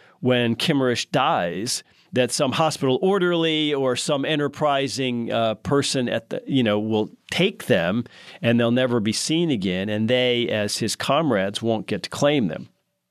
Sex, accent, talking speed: male, American, 160 wpm